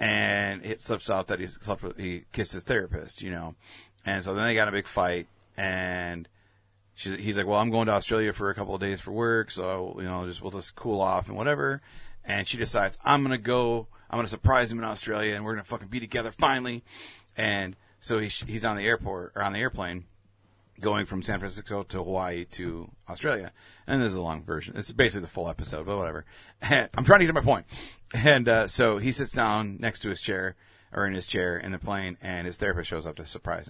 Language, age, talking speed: English, 40-59, 235 wpm